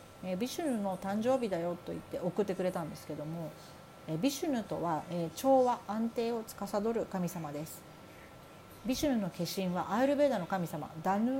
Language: Japanese